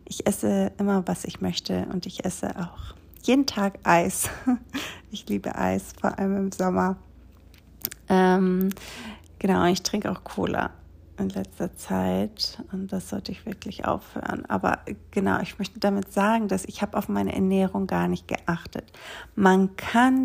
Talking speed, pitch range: 155 wpm, 175-210 Hz